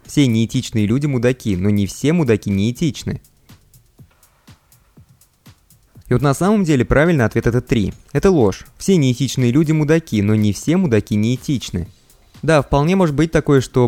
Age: 20-39